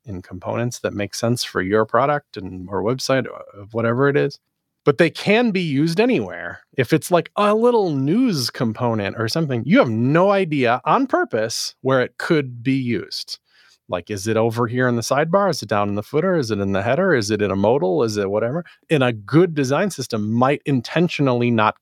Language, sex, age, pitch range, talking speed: English, male, 30-49, 110-155 Hz, 205 wpm